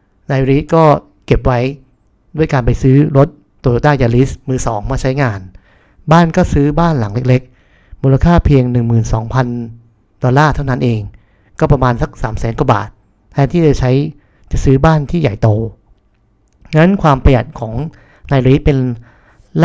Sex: male